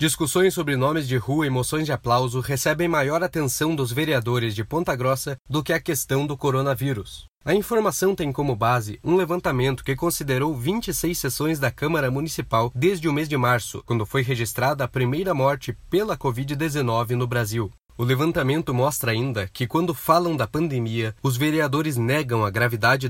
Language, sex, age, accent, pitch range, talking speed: Portuguese, male, 20-39, Brazilian, 125-165 Hz, 170 wpm